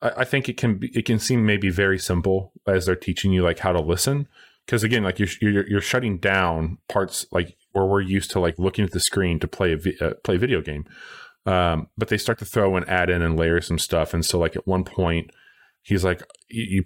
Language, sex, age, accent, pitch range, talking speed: English, male, 30-49, American, 90-105 Hz, 245 wpm